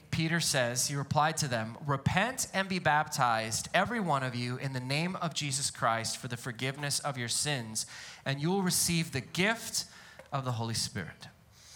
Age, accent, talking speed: 20-39, American, 185 wpm